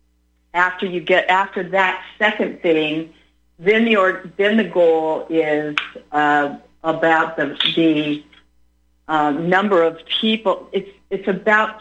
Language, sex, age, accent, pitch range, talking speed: English, female, 50-69, American, 150-185 Hz, 125 wpm